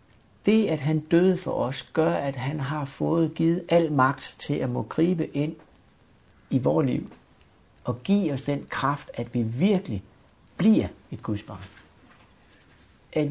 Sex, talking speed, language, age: male, 155 wpm, Danish, 60-79